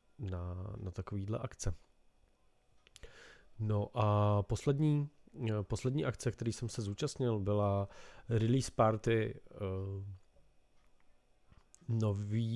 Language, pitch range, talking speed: Czech, 100-120 Hz, 85 wpm